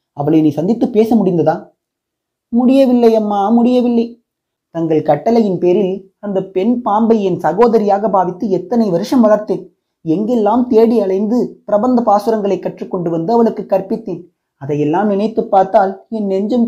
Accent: native